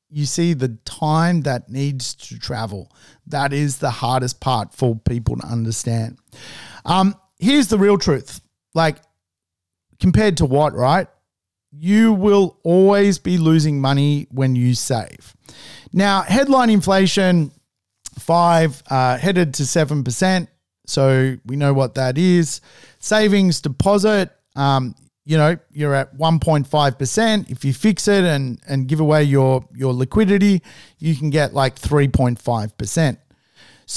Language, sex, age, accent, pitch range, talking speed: English, male, 40-59, Australian, 130-180 Hz, 130 wpm